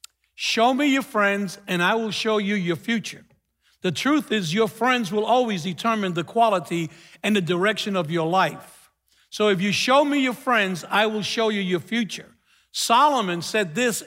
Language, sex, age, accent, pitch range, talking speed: English, male, 60-79, American, 195-245 Hz, 185 wpm